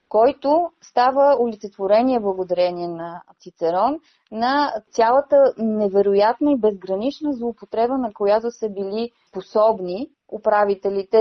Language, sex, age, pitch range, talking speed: Bulgarian, female, 20-39, 185-240 Hz, 95 wpm